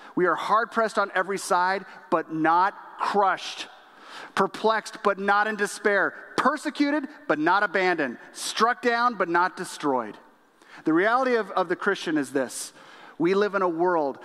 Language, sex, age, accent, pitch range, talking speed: English, male, 40-59, American, 160-220 Hz, 150 wpm